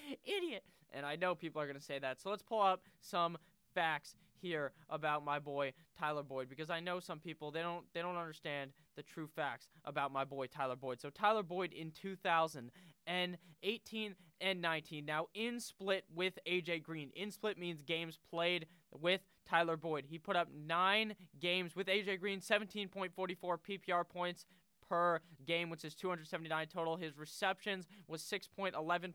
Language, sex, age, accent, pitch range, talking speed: English, male, 20-39, American, 155-190 Hz, 175 wpm